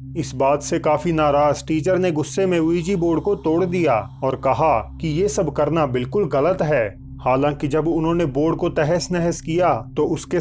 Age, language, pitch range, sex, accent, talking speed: 30-49, Hindi, 140-170 Hz, male, native, 190 wpm